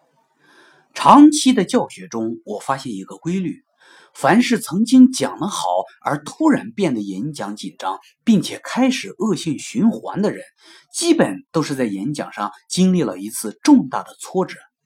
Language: Chinese